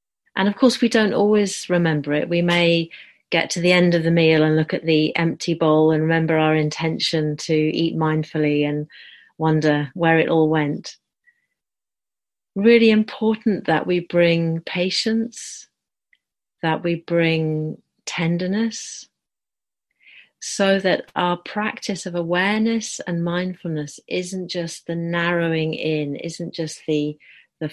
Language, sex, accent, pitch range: English, female, British, 155-190 Hz